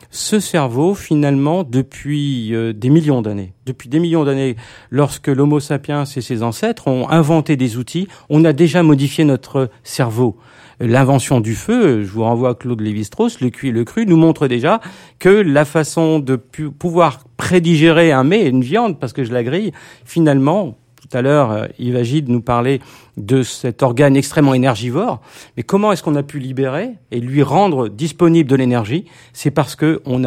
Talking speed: 175 wpm